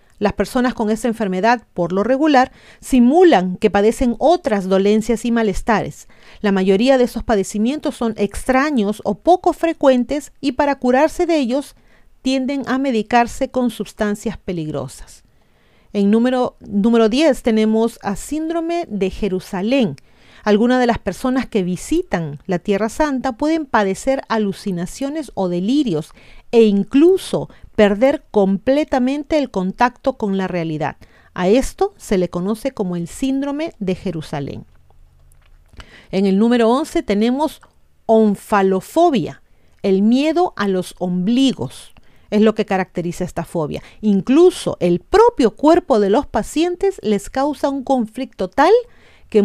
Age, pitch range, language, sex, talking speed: 40-59, 200-275 Hz, Spanish, female, 130 wpm